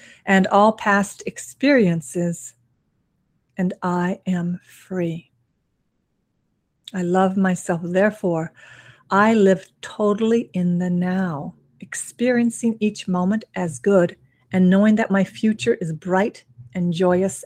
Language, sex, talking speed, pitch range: English, female, 110 wpm, 170-195 Hz